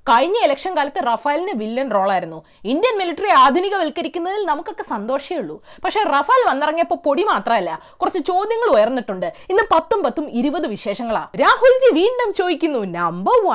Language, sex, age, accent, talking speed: Malayalam, female, 20-39, native, 115 wpm